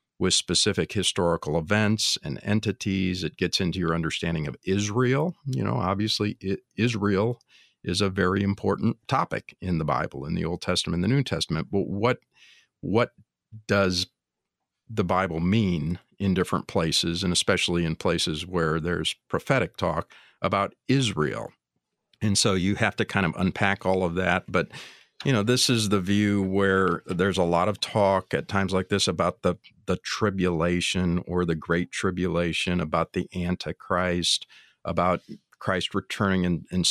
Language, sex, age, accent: English, male, 50-69, American